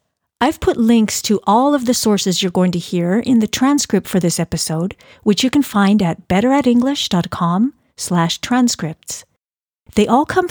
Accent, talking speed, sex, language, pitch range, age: American, 160 wpm, female, English, 190-255 Hz, 50-69